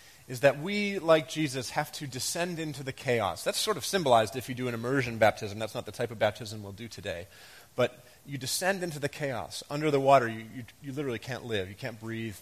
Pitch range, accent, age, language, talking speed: 115-150 Hz, American, 30-49, English, 230 wpm